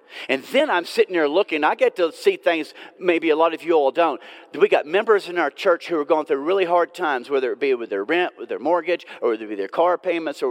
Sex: male